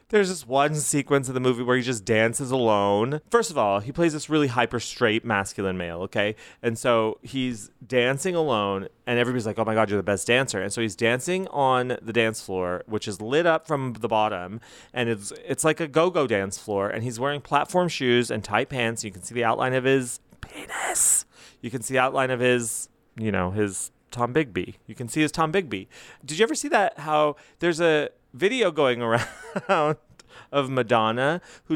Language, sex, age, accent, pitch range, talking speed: English, male, 30-49, American, 115-160 Hz, 205 wpm